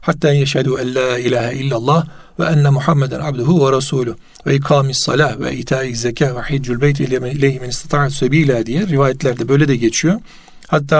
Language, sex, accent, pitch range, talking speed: Turkish, male, native, 140-180 Hz, 165 wpm